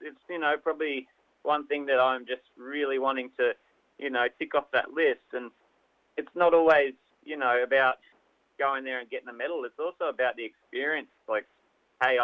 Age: 30-49